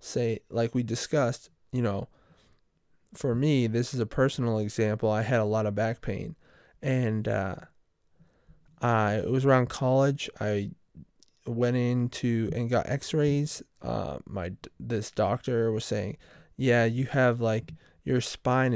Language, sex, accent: English, male, American